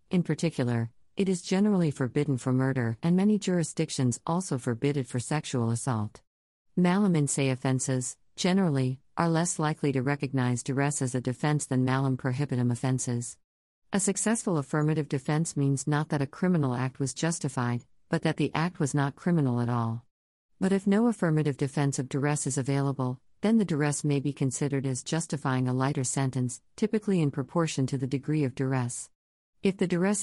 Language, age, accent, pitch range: English, 50-69, American, 130-160 Hz